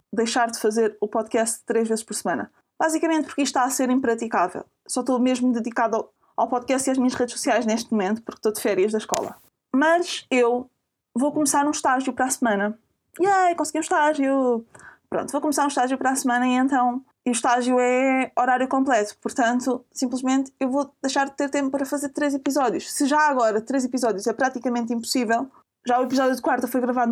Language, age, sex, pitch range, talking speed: Portuguese, 20-39, female, 245-290 Hz, 200 wpm